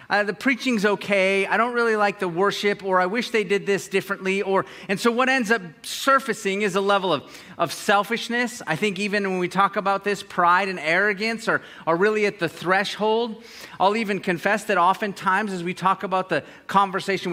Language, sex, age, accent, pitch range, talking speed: English, male, 30-49, American, 160-205 Hz, 200 wpm